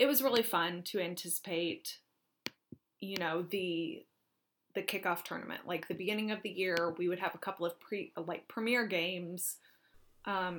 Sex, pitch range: female, 170-205 Hz